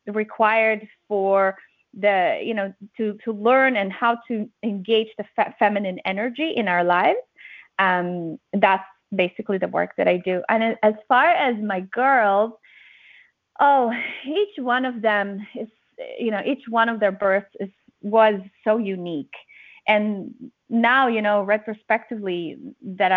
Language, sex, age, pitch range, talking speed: English, female, 20-39, 200-250 Hz, 145 wpm